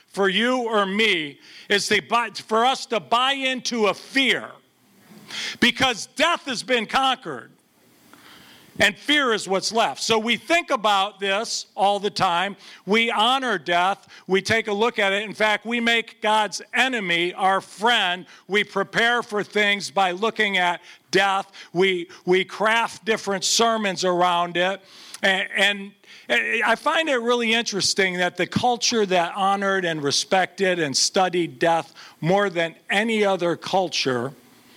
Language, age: English, 50-69